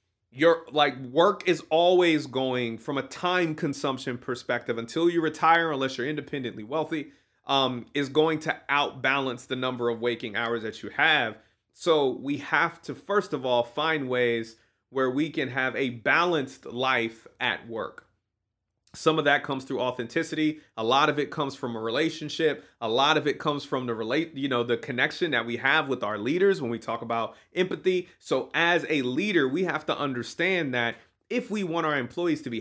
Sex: male